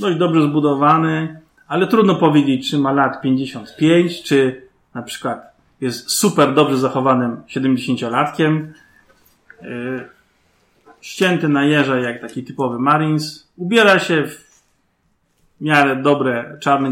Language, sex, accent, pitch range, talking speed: Polish, male, native, 125-150 Hz, 110 wpm